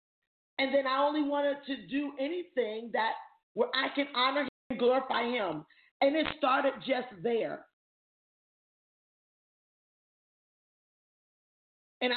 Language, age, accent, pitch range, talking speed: English, 40-59, American, 260-305 Hz, 115 wpm